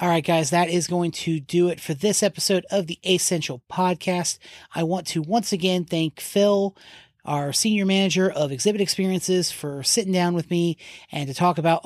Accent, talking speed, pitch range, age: American, 190 wpm, 155-185 Hz, 30-49